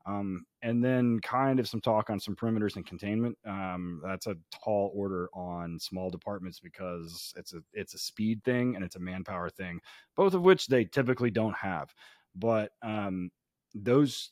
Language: English